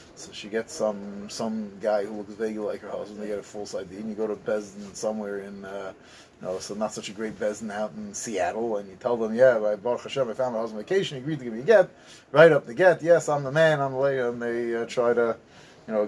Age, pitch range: 30-49, 115-155 Hz